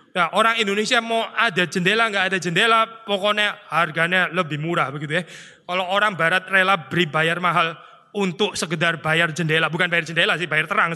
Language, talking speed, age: Indonesian, 175 wpm, 20-39